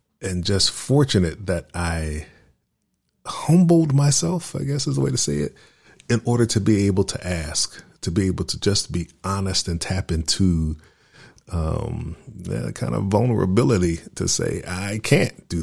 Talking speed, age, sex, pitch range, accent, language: 160 wpm, 40-59, male, 80-100 Hz, American, English